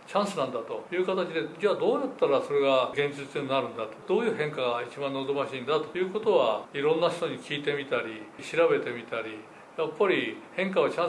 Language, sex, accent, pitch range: Japanese, male, native, 145-210 Hz